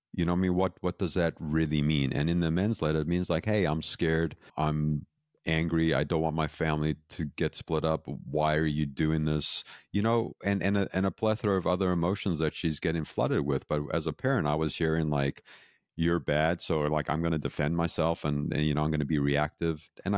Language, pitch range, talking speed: English, 70-90 Hz, 240 wpm